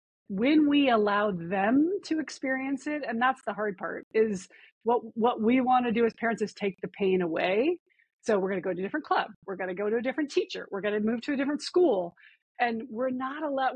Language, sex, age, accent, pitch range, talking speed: English, female, 30-49, American, 220-280 Hz, 240 wpm